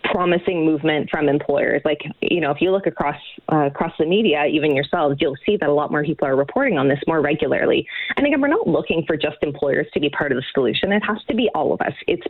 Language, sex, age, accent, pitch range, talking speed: English, female, 20-39, American, 145-175 Hz, 255 wpm